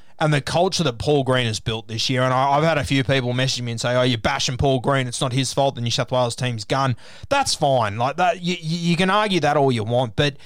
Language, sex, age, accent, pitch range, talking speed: English, male, 20-39, Australian, 125-160 Hz, 275 wpm